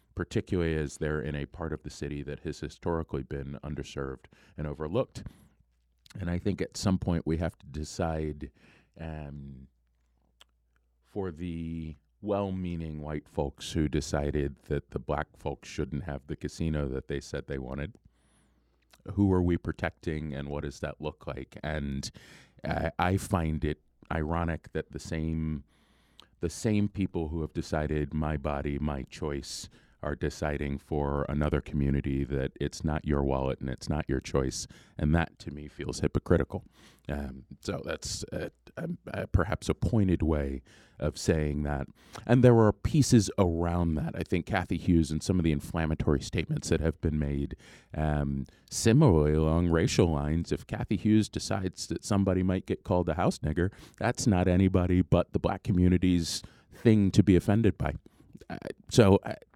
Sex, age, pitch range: male, 30-49, 75-90 Hz